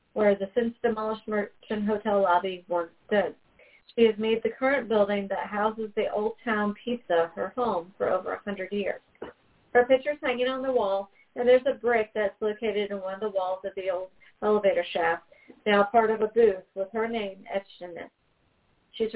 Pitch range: 200-235 Hz